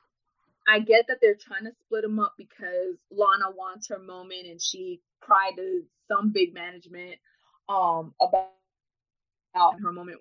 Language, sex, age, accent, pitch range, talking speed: English, female, 20-39, American, 175-255 Hz, 145 wpm